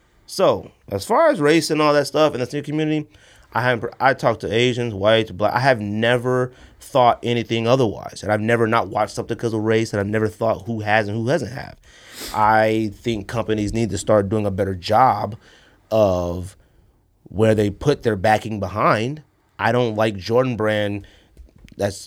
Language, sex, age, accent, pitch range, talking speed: English, male, 30-49, American, 100-125 Hz, 190 wpm